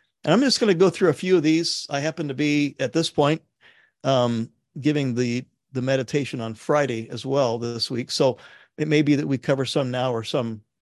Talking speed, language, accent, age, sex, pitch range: 220 wpm, English, American, 50-69, male, 120-160 Hz